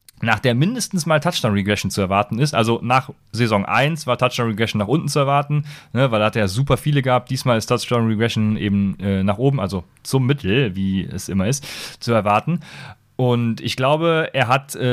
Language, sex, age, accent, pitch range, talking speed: German, male, 30-49, German, 110-145 Hz, 190 wpm